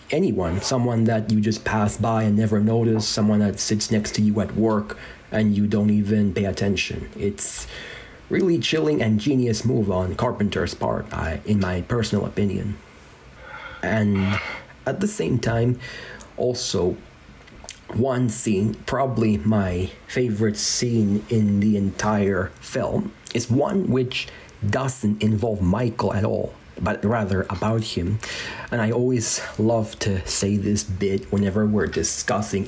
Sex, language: male, English